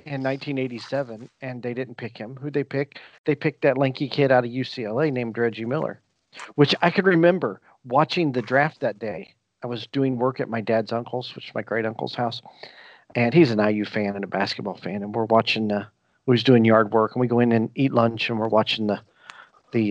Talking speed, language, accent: 225 wpm, English, American